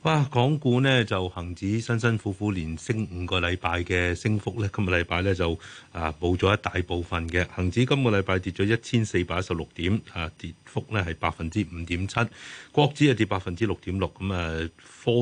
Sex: male